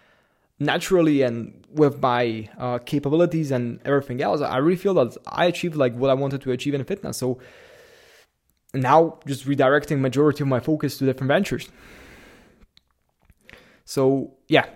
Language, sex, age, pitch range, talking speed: English, male, 20-39, 125-150 Hz, 145 wpm